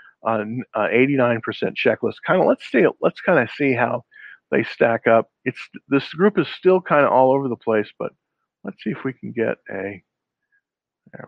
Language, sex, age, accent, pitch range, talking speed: English, male, 50-69, American, 120-175 Hz, 190 wpm